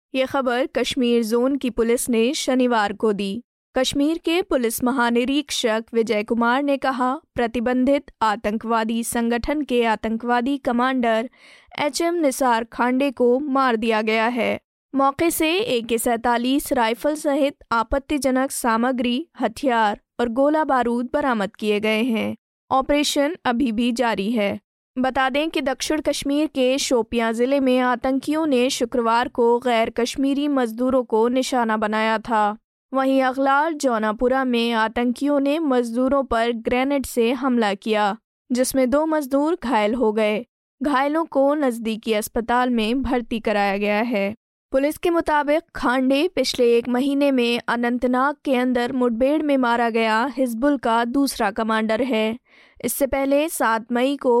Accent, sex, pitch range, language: native, female, 230-275 Hz, Hindi